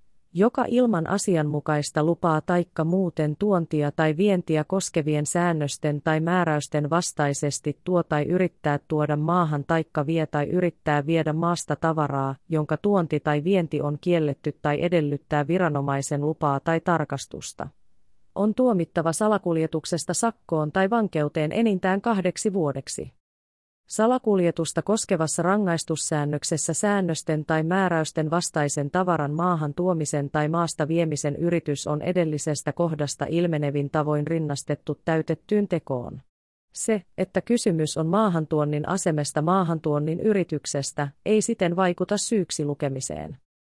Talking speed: 115 wpm